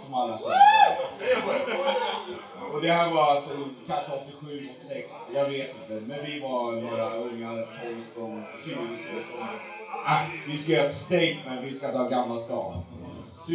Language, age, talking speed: English, 30-49, 130 wpm